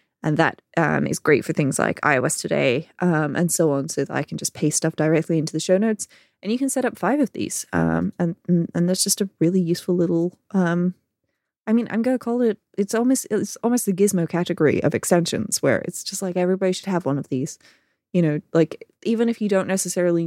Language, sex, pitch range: English, female, 160-200 Hz